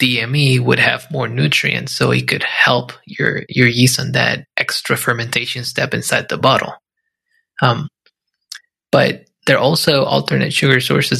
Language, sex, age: English, male, 20-39